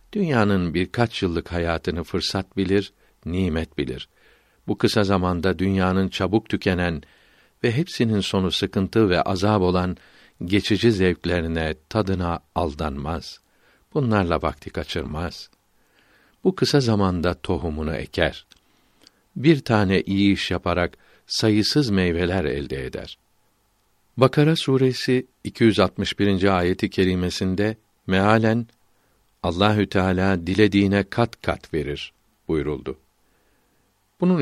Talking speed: 100 wpm